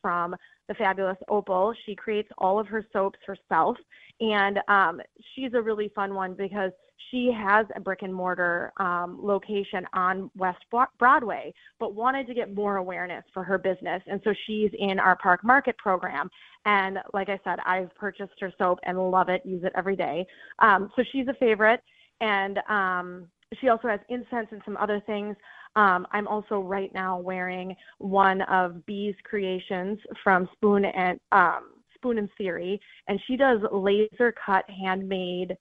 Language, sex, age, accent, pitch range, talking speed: English, female, 20-39, American, 185-215 Hz, 170 wpm